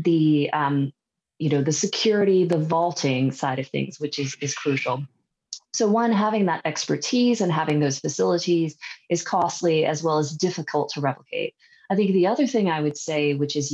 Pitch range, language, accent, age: 140-170 Hz, English, American, 20-39